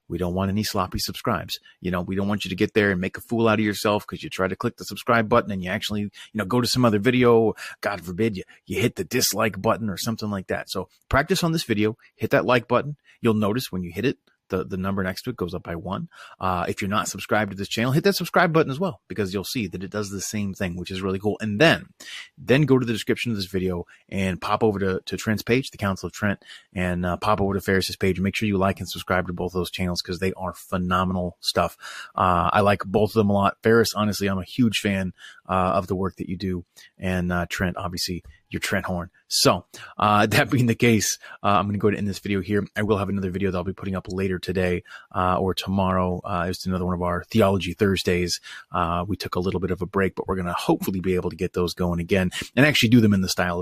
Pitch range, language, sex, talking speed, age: 90-110 Hz, English, male, 270 wpm, 30-49